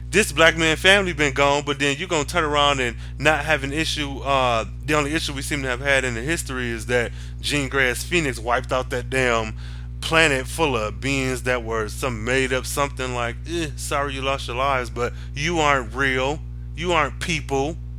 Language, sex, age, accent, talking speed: English, male, 20-39, American, 210 wpm